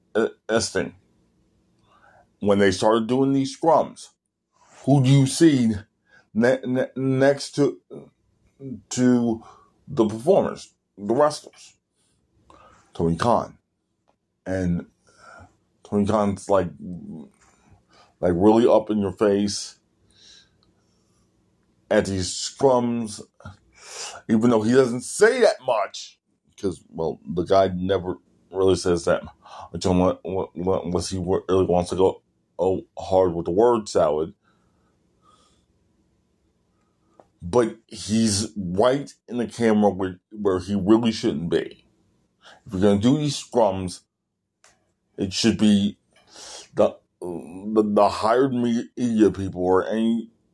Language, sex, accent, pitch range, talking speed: English, male, American, 95-120 Hz, 105 wpm